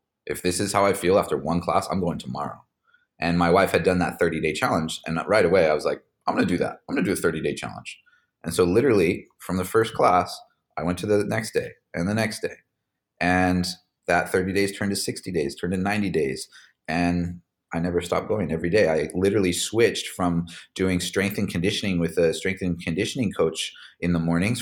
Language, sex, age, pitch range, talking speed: English, male, 30-49, 85-100 Hz, 220 wpm